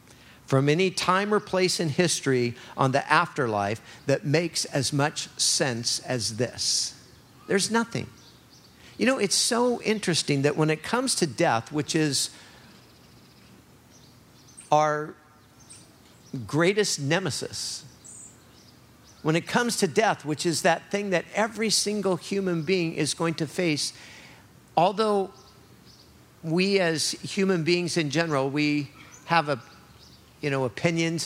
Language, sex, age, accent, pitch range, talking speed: English, male, 50-69, American, 145-190 Hz, 125 wpm